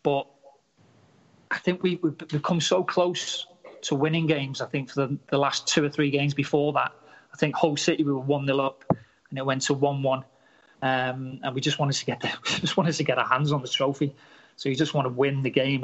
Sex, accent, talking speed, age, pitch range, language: male, British, 225 wpm, 30-49, 135-160 Hz, English